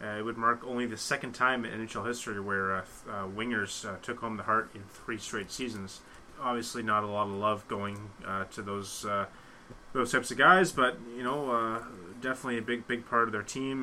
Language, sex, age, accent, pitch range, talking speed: English, male, 30-49, American, 100-120 Hz, 220 wpm